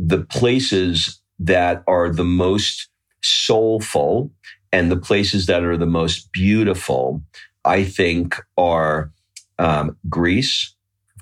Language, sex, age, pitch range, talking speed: English, male, 40-59, 85-100 Hz, 110 wpm